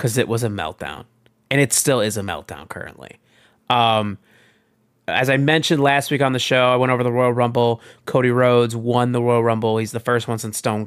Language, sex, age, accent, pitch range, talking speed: English, male, 30-49, American, 110-130 Hz, 215 wpm